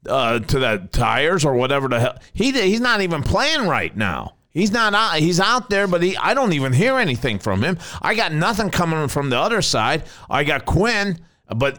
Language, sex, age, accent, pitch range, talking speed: English, male, 50-69, American, 135-175 Hz, 215 wpm